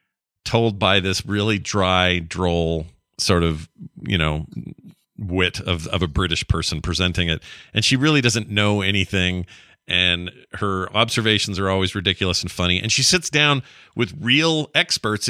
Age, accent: 40-59, American